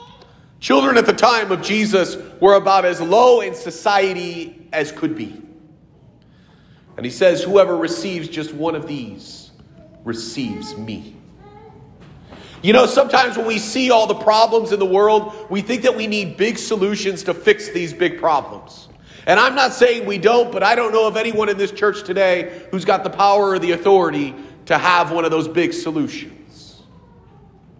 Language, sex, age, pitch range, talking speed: English, male, 40-59, 145-200 Hz, 175 wpm